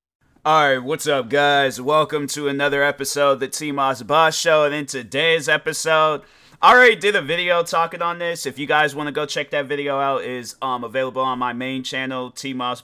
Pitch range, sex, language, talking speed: 130-155 Hz, male, English, 200 wpm